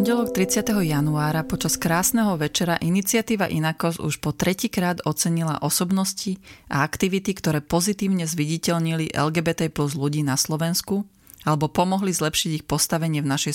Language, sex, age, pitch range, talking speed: Slovak, female, 30-49, 150-180 Hz, 135 wpm